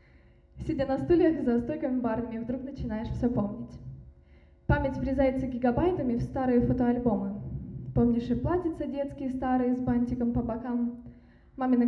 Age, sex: 20-39, female